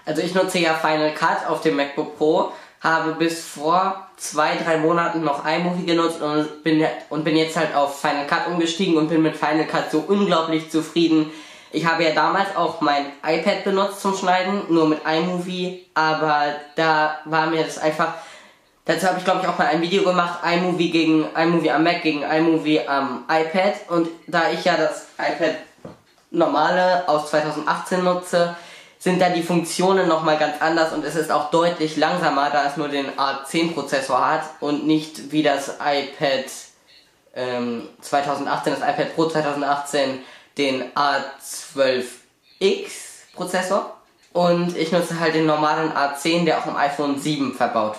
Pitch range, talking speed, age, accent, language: 150-175 Hz, 165 wpm, 10-29, German, German